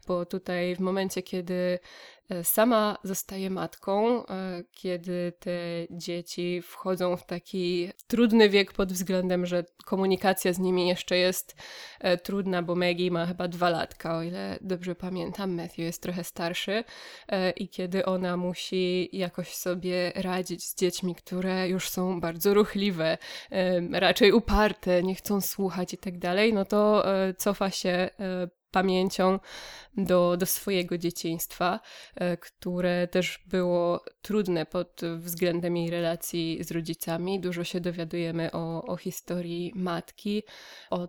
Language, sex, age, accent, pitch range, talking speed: Polish, female, 20-39, native, 175-190 Hz, 130 wpm